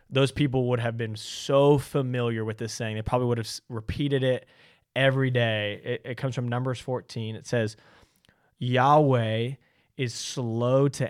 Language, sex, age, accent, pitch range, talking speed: English, male, 20-39, American, 115-135 Hz, 160 wpm